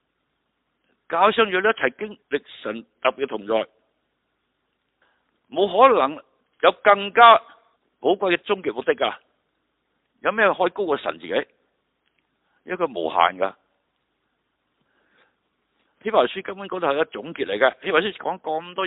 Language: Chinese